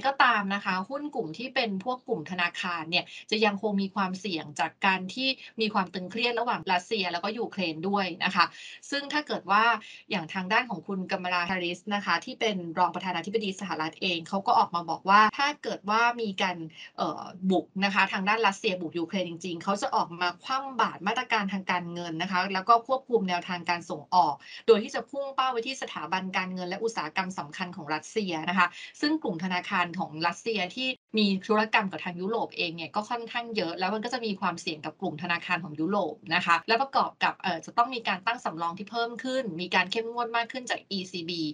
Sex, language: female, Thai